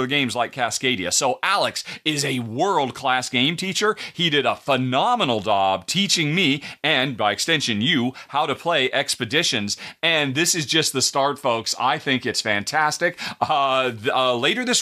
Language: English